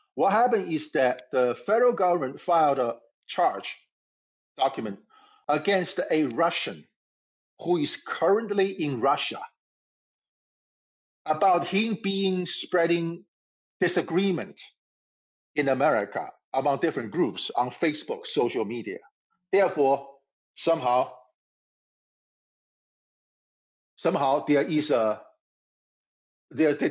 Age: 50-69